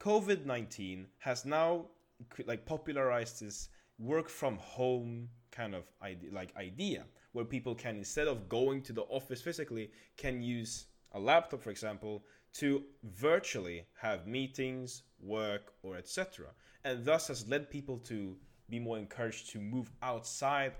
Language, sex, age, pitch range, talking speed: English, male, 20-39, 105-135 Hz, 145 wpm